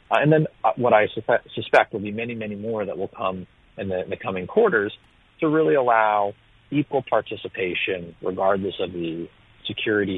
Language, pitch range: English, 95-115 Hz